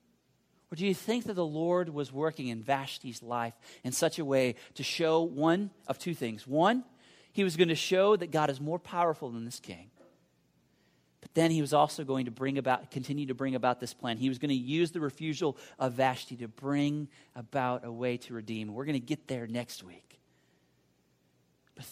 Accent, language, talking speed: American, English, 205 wpm